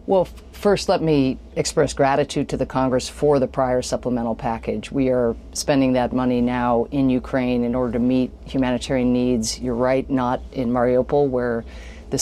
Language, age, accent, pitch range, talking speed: English, 40-59, American, 120-135 Hz, 170 wpm